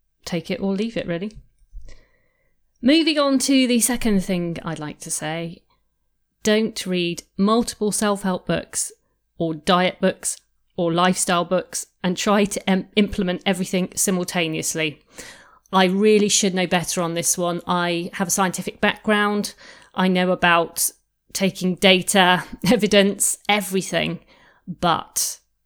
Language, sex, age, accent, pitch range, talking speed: English, female, 40-59, British, 175-215 Hz, 125 wpm